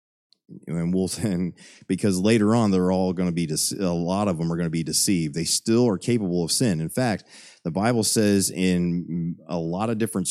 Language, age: English, 30-49